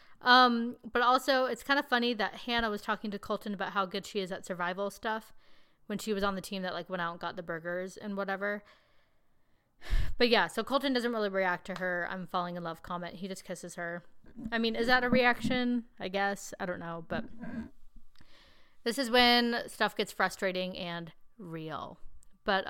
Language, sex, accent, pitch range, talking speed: English, female, American, 190-240 Hz, 200 wpm